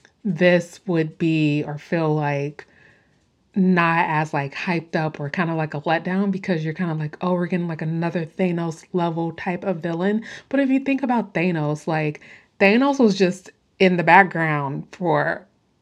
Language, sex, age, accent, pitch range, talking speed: English, female, 20-39, American, 160-195 Hz, 175 wpm